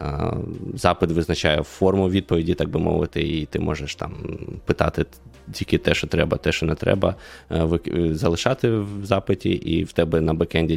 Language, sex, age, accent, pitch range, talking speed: Ukrainian, male, 20-39, native, 80-90 Hz, 155 wpm